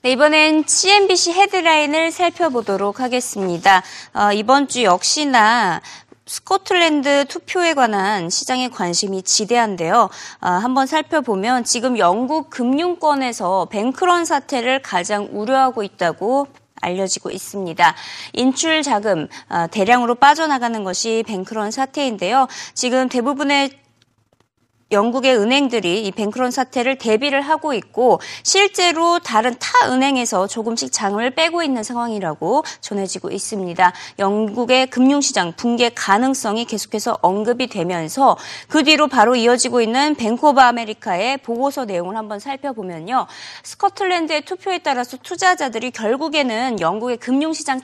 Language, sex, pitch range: Korean, female, 205-285 Hz